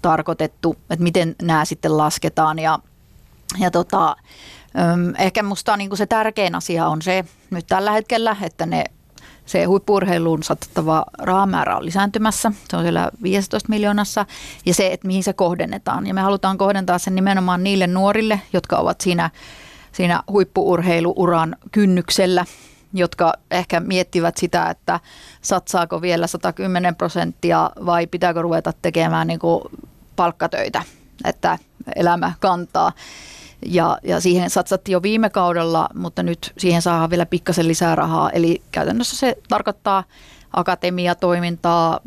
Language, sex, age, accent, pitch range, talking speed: Finnish, female, 30-49, native, 170-195 Hz, 135 wpm